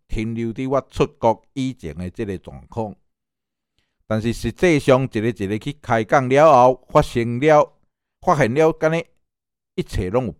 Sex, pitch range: male, 110-150 Hz